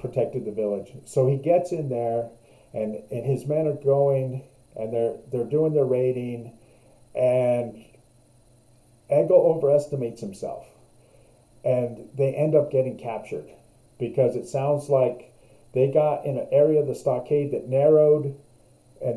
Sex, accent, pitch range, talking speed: male, American, 120-145 Hz, 140 wpm